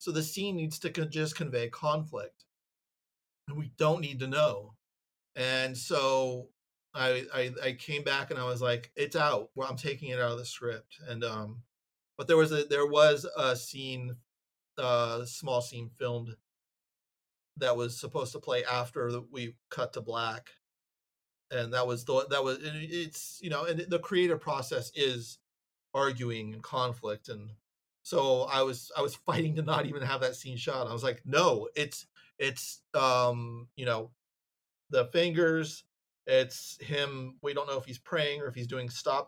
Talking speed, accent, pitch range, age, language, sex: 180 wpm, American, 120-145 Hz, 40-59, English, male